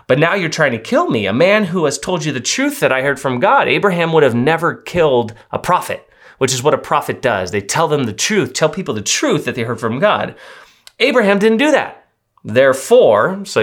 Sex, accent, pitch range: male, American, 105-145 Hz